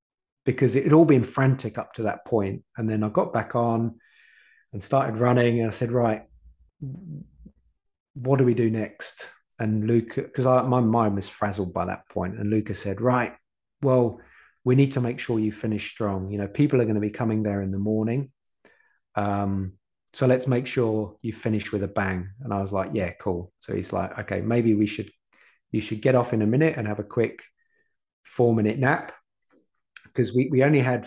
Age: 30-49